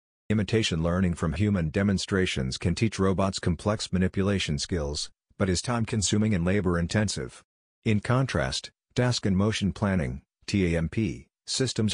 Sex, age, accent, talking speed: male, 50-69, American, 120 wpm